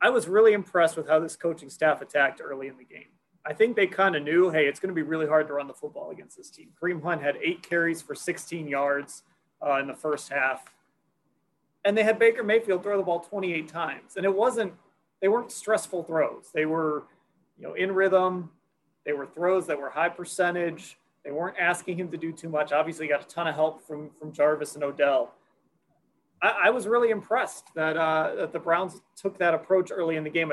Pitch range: 150-190 Hz